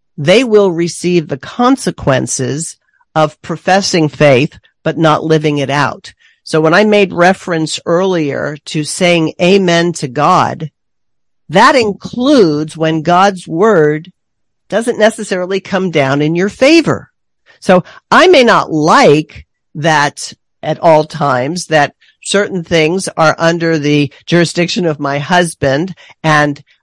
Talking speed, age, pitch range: 125 wpm, 50-69, 150-190 Hz